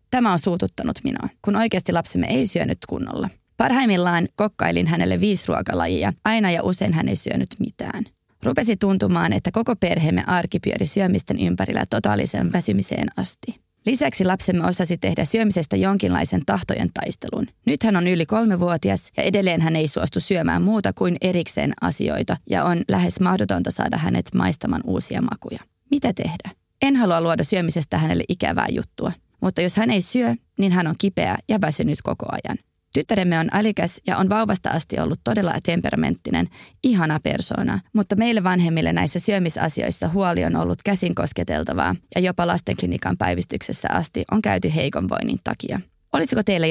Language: Finnish